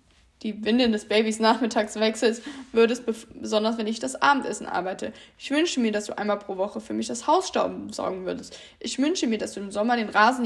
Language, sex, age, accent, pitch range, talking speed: German, female, 20-39, German, 215-270 Hz, 210 wpm